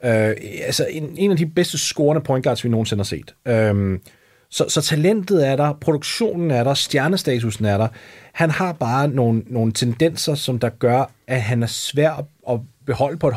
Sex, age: male, 30-49